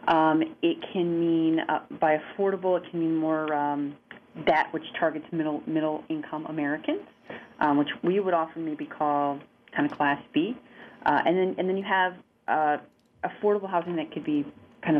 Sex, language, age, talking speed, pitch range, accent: female, English, 30-49, 170 wpm, 150-180 Hz, American